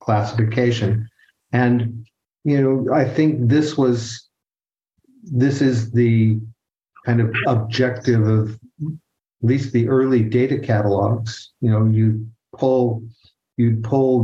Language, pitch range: English, 110-125 Hz